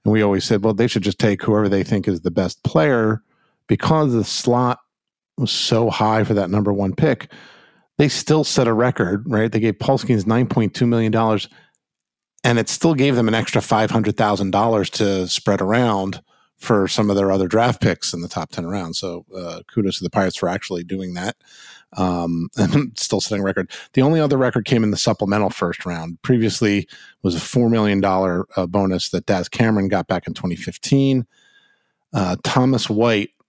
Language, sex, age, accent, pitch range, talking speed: English, male, 50-69, American, 95-115 Hz, 190 wpm